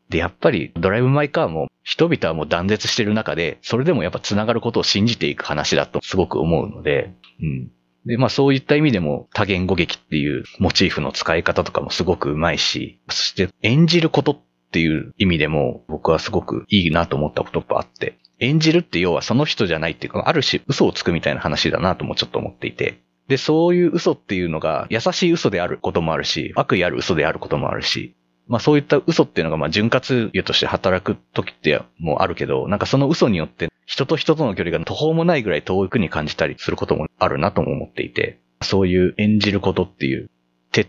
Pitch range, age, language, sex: 80-135 Hz, 30-49, Japanese, male